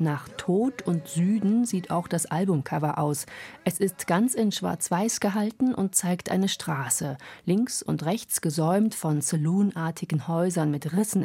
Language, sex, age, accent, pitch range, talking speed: German, female, 40-59, German, 155-195 Hz, 150 wpm